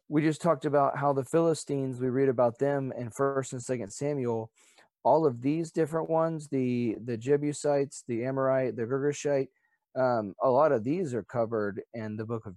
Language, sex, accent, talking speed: English, male, American, 185 wpm